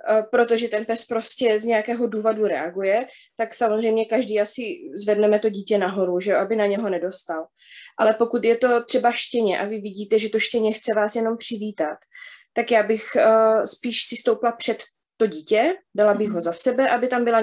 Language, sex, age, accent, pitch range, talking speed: Czech, female, 20-39, native, 205-235 Hz, 185 wpm